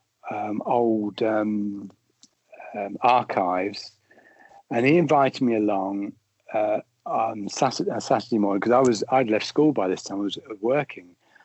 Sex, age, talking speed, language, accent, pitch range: male, 60-79, 140 wpm, English, British, 105-130 Hz